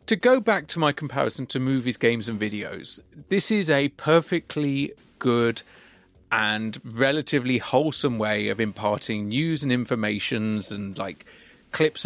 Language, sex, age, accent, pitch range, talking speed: English, male, 40-59, British, 120-160 Hz, 140 wpm